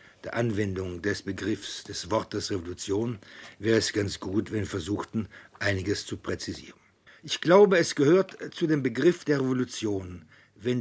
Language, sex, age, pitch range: German, male, 60-79, 110-145 Hz